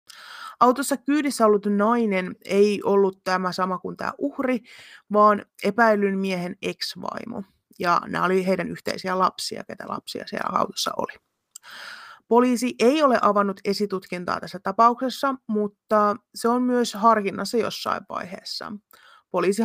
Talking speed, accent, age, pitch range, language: 125 wpm, native, 30-49, 170-220 Hz, Finnish